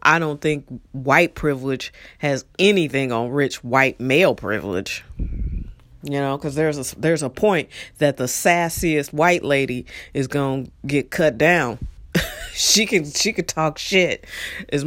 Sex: female